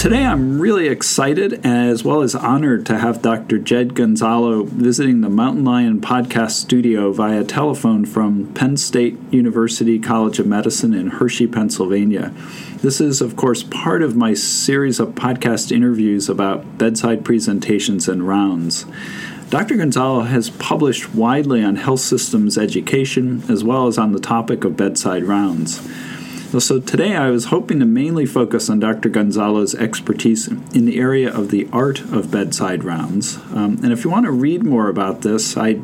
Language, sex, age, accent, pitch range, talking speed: English, male, 40-59, American, 105-125 Hz, 160 wpm